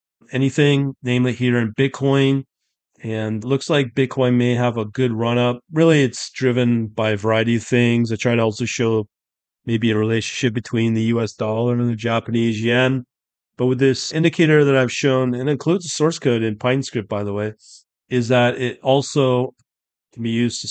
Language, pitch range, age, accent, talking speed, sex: English, 115-135 Hz, 30-49, American, 185 wpm, male